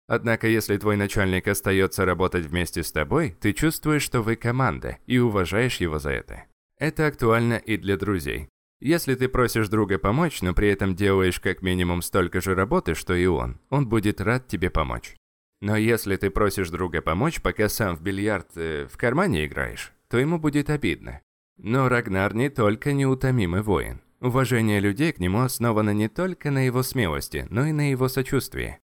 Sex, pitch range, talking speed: male, 90-120 Hz, 175 wpm